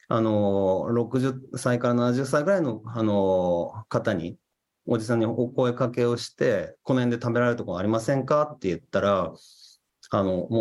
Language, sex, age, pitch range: Japanese, male, 30-49, 105-145 Hz